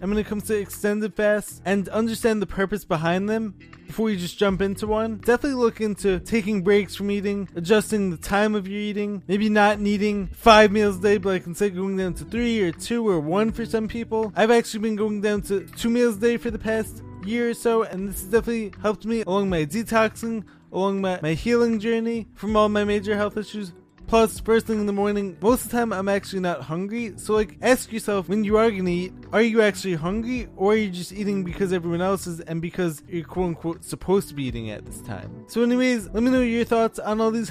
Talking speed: 235 wpm